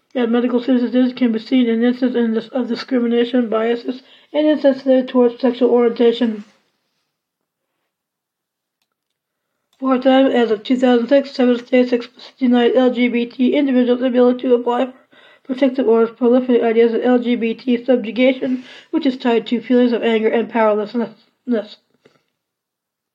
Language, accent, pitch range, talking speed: English, American, 235-260 Hz, 125 wpm